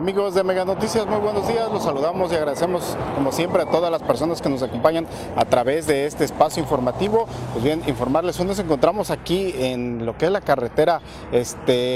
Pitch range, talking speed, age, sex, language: 140-185 Hz, 200 wpm, 40-59, male, Spanish